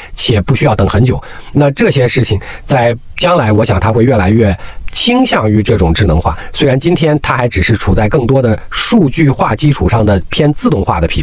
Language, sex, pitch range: Chinese, male, 105-150 Hz